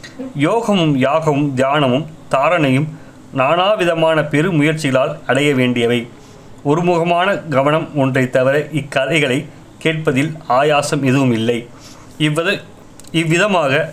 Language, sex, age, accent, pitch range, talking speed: Tamil, male, 30-49, native, 135-160 Hz, 80 wpm